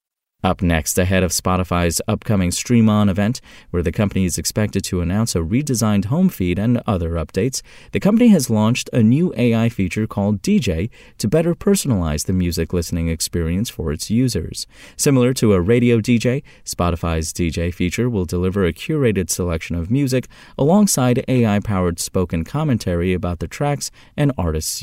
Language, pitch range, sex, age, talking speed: English, 90-120 Hz, male, 30-49, 160 wpm